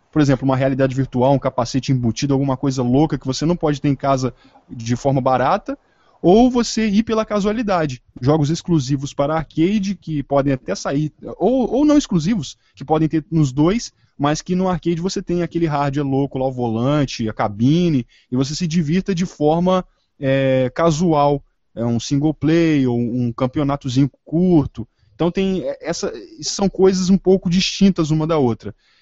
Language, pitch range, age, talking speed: Portuguese, 130-175 Hz, 20-39, 175 wpm